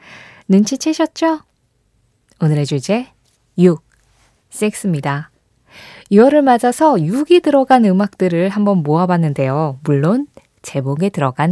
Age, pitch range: 20-39, 150-245 Hz